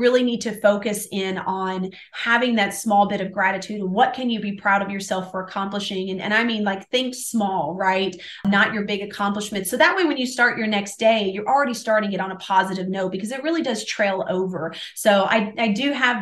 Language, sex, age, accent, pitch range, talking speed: English, female, 30-49, American, 200-250 Hz, 230 wpm